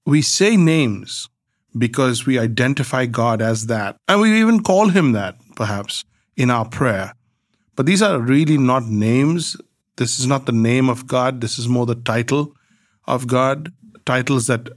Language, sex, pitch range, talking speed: English, male, 115-135 Hz, 165 wpm